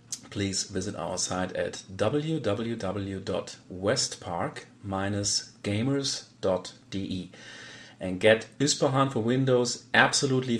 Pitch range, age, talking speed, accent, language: 95-125 Hz, 40-59, 70 wpm, German, English